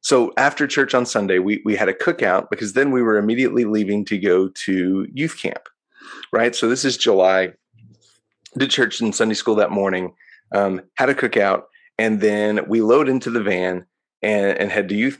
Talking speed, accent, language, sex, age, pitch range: 195 wpm, American, English, male, 30-49, 105-125 Hz